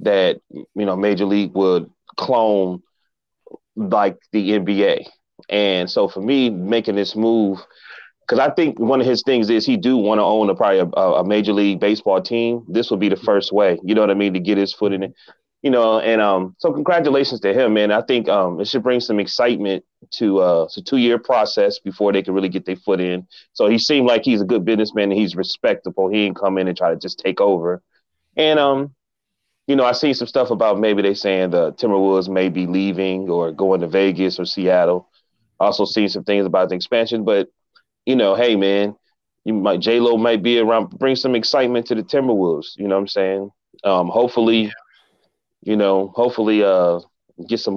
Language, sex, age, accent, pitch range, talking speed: English, male, 30-49, American, 95-120 Hz, 210 wpm